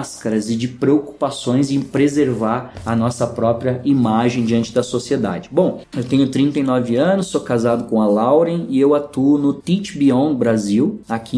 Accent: Brazilian